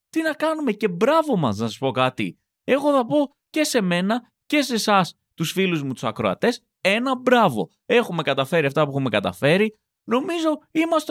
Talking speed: 185 wpm